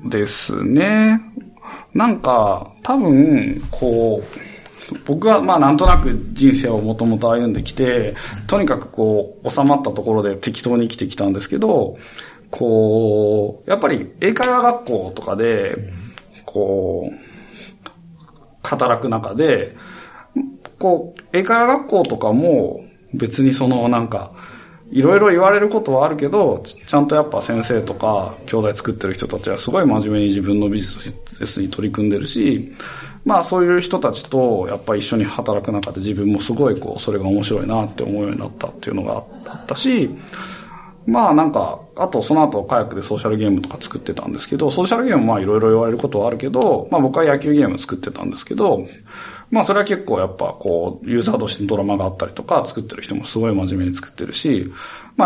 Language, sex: Japanese, male